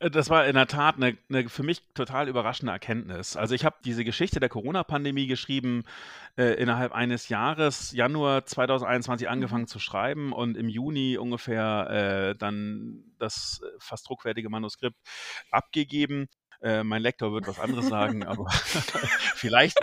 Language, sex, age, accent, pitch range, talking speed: German, male, 40-59, German, 115-140 Hz, 145 wpm